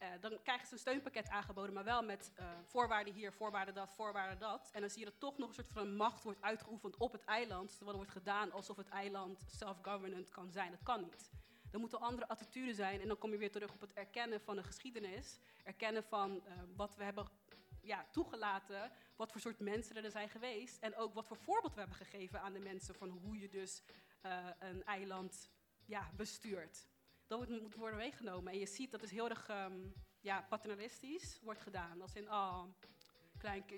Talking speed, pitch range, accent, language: 210 wpm, 195-230 Hz, Dutch, Dutch